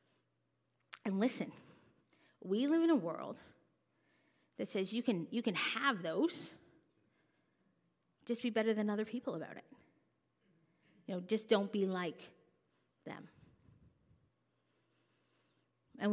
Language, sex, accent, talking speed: English, female, American, 115 wpm